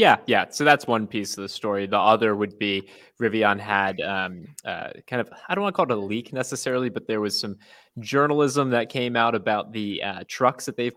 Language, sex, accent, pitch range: English, male, American, 105-125 Hz